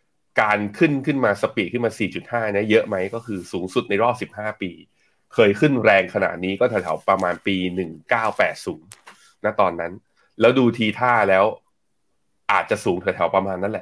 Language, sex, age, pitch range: Thai, male, 30-49, 95-125 Hz